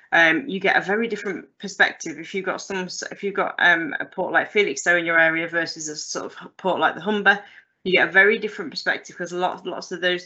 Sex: female